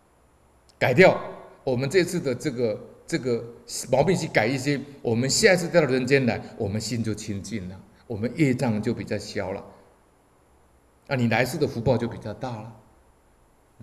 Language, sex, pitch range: Chinese, male, 105-140 Hz